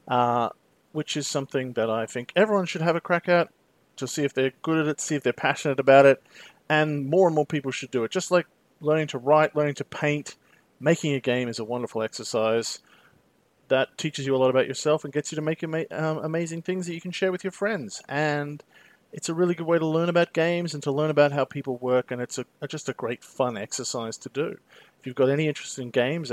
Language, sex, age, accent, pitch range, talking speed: English, male, 40-59, Australian, 125-160 Hz, 235 wpm